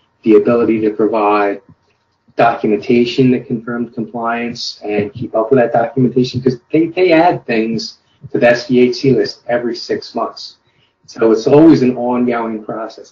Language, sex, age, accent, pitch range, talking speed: English, male, 30-49, American, 110-130 Hz, 145 wpm